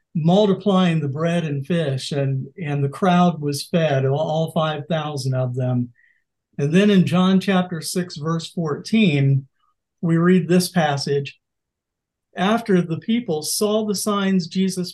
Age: 50-69